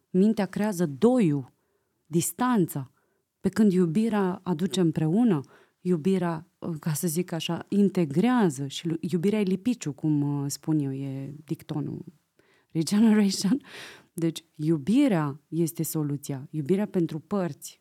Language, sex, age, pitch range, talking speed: Romanian, female, 30-49, 155-200 Hz, 110 wpm